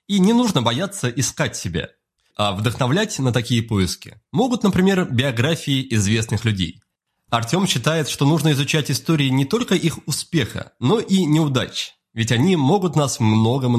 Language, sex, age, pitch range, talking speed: Russian, male, 20-39, 120-180 Hz, 150 wpm